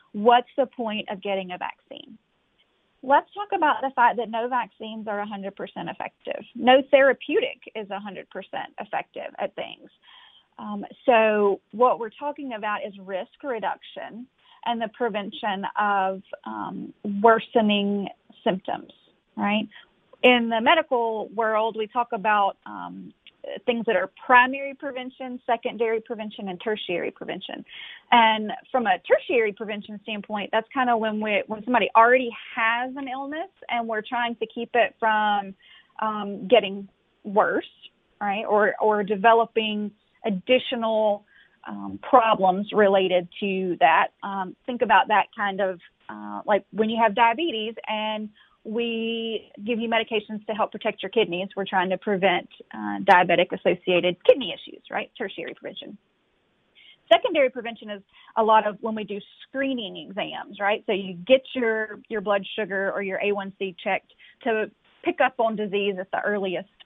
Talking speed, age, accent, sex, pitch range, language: 145 wpm, 30-49, American, female, 200-240 Hz, English